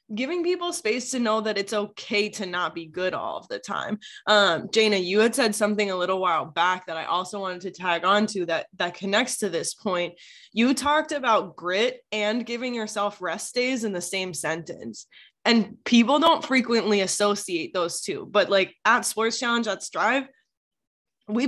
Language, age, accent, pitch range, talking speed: English, 10-29, American, 180-220 Hz, 190 wpm